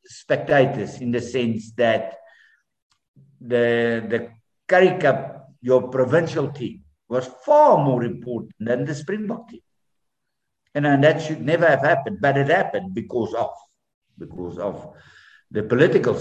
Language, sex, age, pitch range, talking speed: English, male, 60-79, 105-145 Hz, 130 wpm